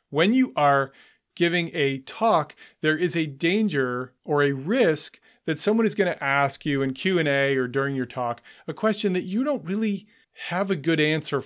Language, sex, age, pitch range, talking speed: English, male, 30-49, 140-190 Hz, 190 wpm